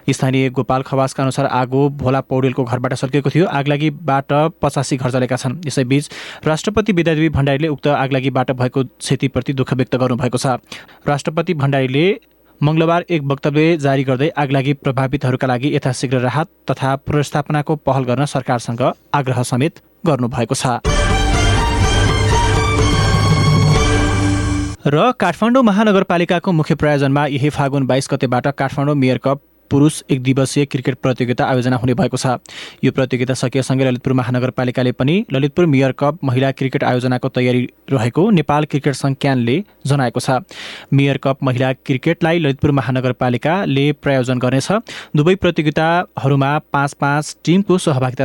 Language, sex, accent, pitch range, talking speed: English, male, Indian, 130-150 Hz, 110 wpm